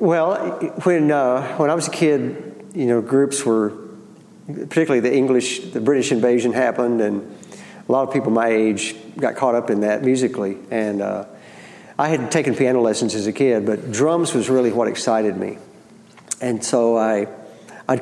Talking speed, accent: 175 wpm, American